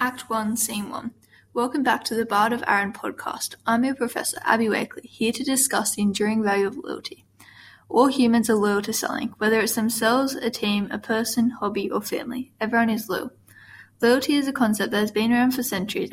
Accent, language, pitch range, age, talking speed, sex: Australian, English, 205-240 Hz, 10-29, 200 wpm, female